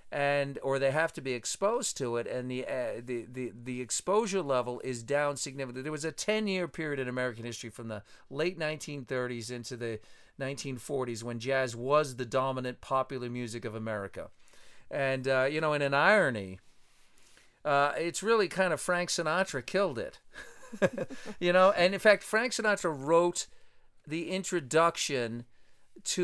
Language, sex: English, male